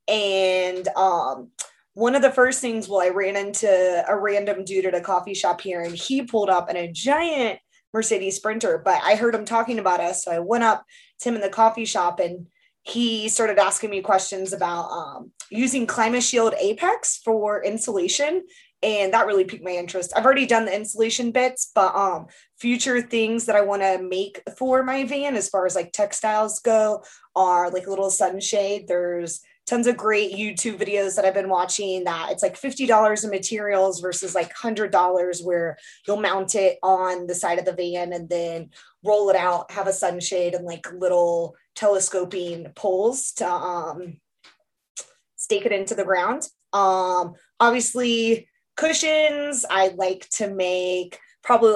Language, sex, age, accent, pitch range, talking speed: English, female, 20-39, American, 185-230 Hz, 175 wpm